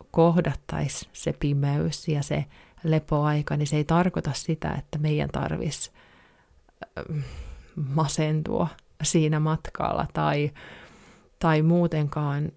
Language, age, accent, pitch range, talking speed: Finnish, 30-49, native, 145-165 Hz, 95 wpm